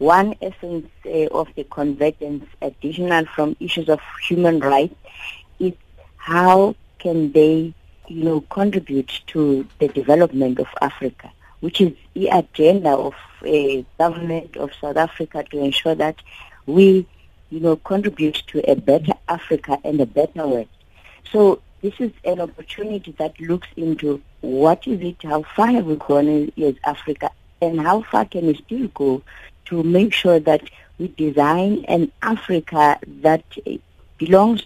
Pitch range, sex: 150-180 Hz, female